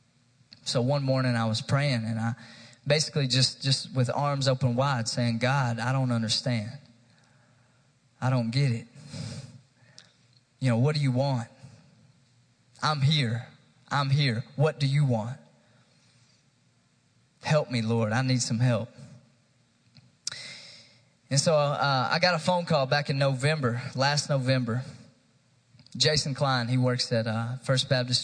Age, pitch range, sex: 20-39, 120-140 Hz, male